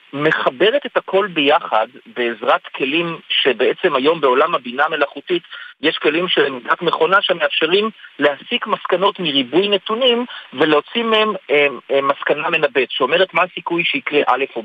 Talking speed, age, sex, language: 135 wpm, 50-69, male, Hebrew